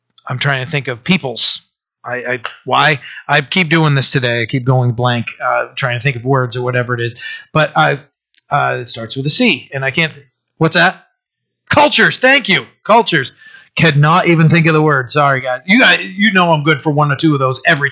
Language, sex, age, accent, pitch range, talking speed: English, male, 30-49, American, 140-170 Hz, 225 wpm